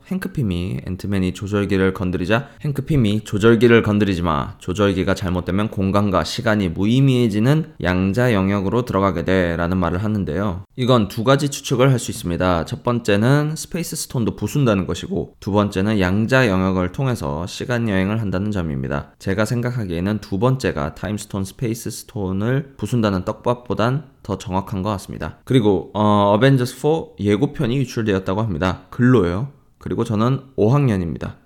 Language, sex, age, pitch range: Korean, male, 20-39, 95-130 Hz